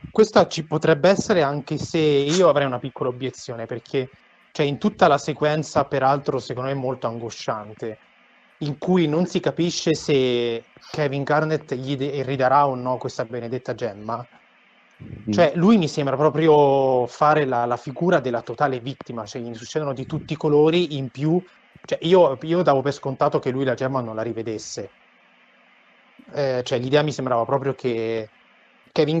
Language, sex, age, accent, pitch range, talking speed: Italian, male, 30-49, native, 125-150 Hz, 165 wpm